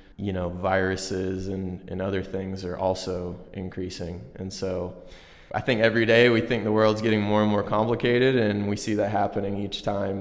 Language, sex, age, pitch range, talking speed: English, male, 20-39, 95-110 Hz, 190 wpm